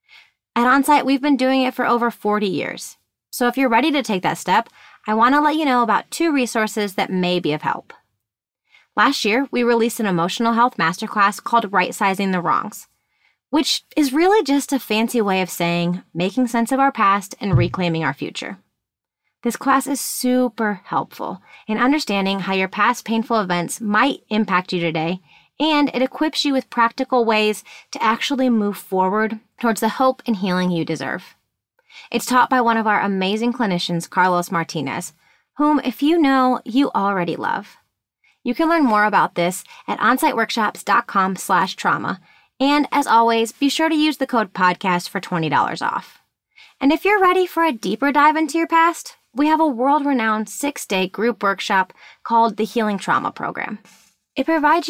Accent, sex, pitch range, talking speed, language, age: American, female, 195-280 Hz, 175 wpm, English, 30-49